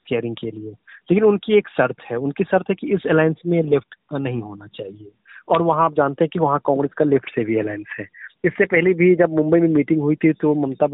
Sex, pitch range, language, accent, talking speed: male, 135-160 Hz, Hindi, native, 120 wpm